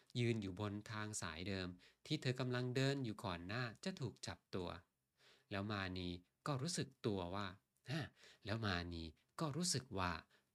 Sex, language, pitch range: male, Thai, 100-150 Hz